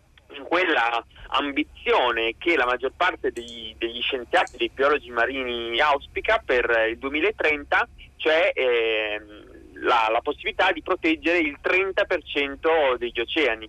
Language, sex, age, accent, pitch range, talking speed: Italian, male, 30-49, native, 120-160 Hz, 120 wpm